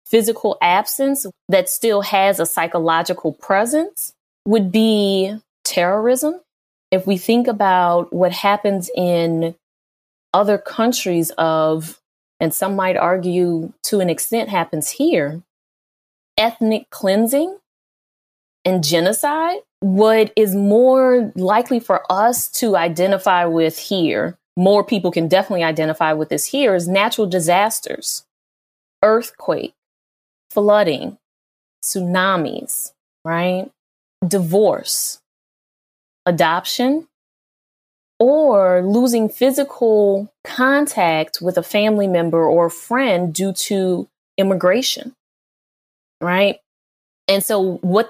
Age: 20-39